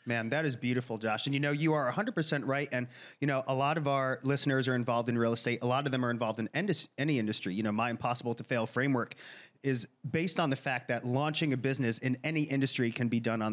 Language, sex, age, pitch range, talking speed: English, male, 30-49, 120-150 Hz, 255 wpm